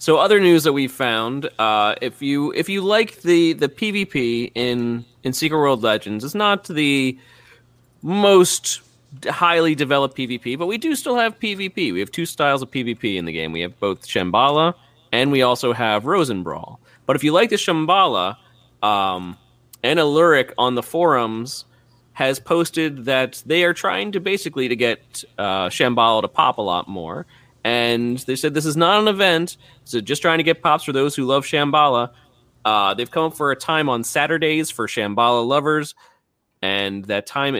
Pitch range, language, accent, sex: 120-160 Hz, English, American, male